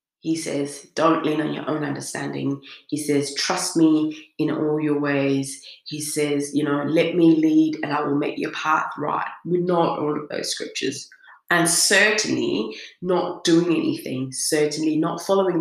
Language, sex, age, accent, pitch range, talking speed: English, female, 30-49, British, 150-210 Hz, 170 wpm